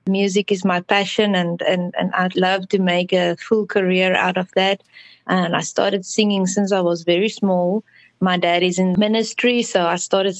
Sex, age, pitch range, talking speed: female, 20-39, 180-215 Hz, 195 wpm